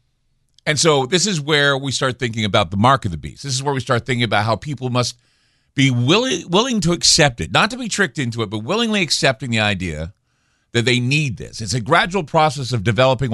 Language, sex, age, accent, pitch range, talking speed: English, male, 50-69, American, 110-145 Hz, 230 wpm